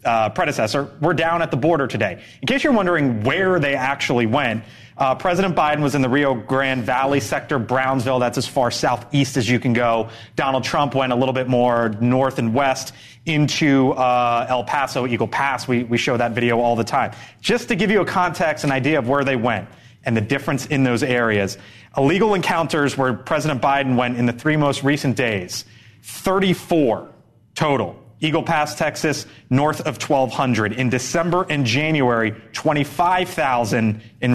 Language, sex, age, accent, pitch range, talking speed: English, male, 30-49, American, 115-150 Hz, 180 wpm